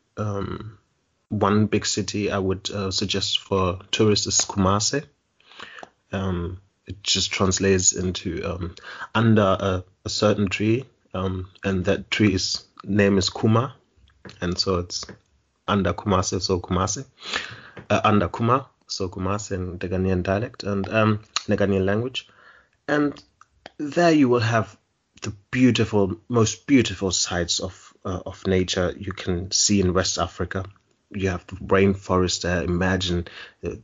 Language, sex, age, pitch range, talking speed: English, male, 30-49, 95-115 Hz, 140 wpm